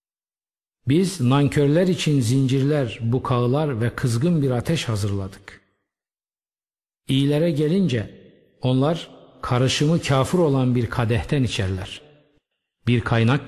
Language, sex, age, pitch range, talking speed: Turkish, male, 50-69, 110-145 Hz, 95 wpm